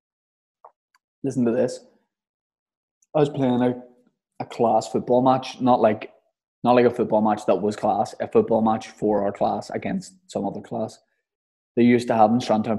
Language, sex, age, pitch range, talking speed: English, male, 20-39, 110-130 Hz, 175 wpm